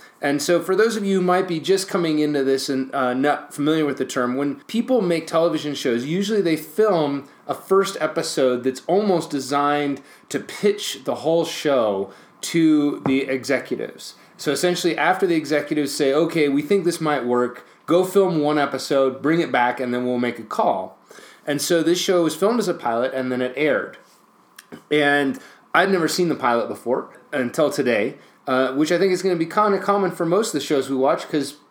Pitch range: 135-175 Hz